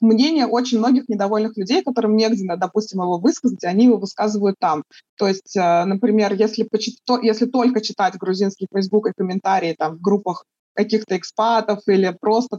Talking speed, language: 155 wpm, Russian